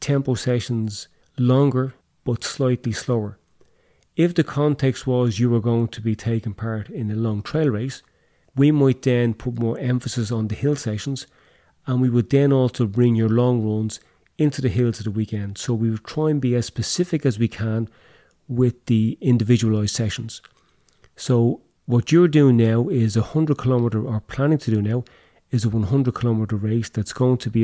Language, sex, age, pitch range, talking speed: English, male, 30-49, 110-125 Hz, 185 wpm